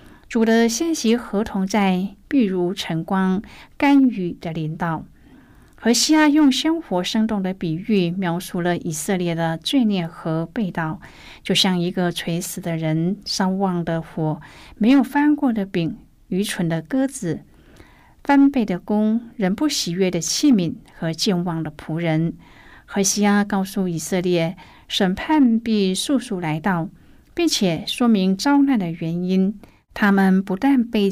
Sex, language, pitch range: female, Chinese, 170-220 Hz